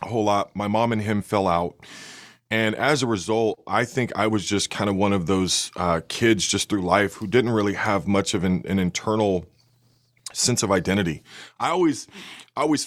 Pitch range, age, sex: 100-120 Hz, 20-39, male